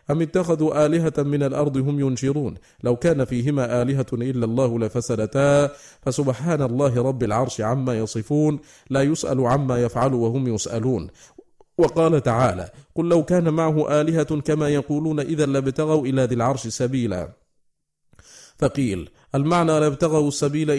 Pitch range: 120-155 Hz